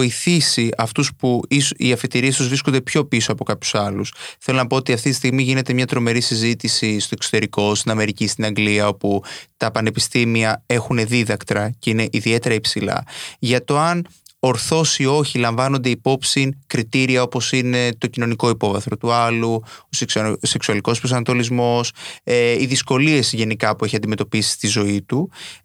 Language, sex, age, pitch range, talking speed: Greek, male, 20-39, 110-135 Hz, 155 wpm